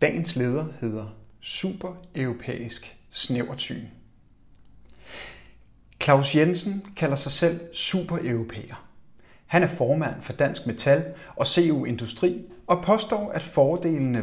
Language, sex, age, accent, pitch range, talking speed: Danish, male, 30-49, native, 120-170 Hz, 100 wpm